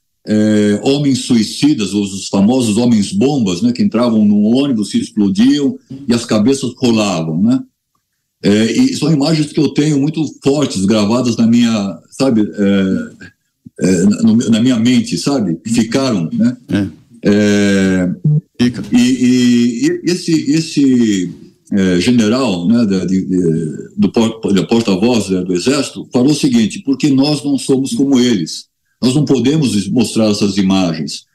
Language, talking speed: Portuguese, 145 wpm